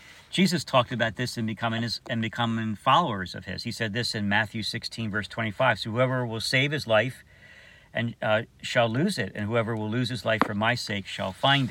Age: 50-69